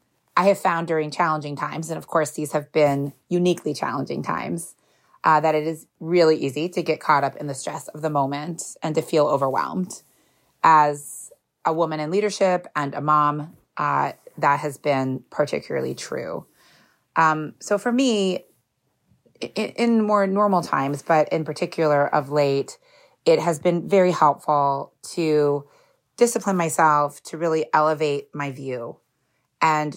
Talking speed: 155 wpm